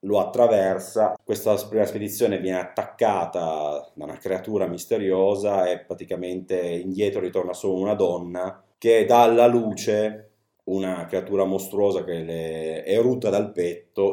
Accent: native